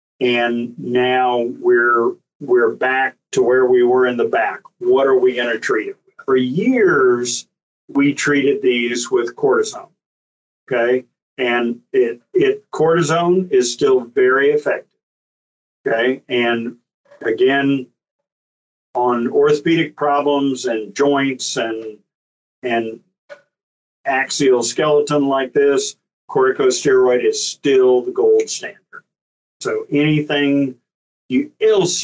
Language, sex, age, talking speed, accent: English, male, 50-69, 110 wpm, American